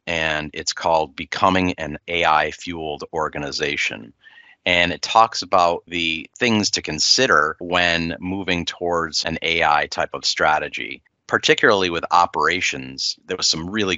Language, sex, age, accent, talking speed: English, male, 30-49, American, 130 wpm